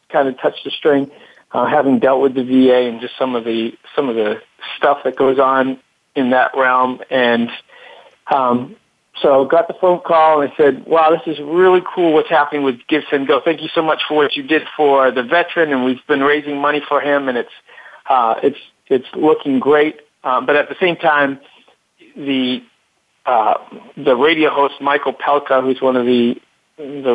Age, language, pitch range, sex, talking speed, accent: 40-59, English, 125-155 Hz, male, 200 wpm, American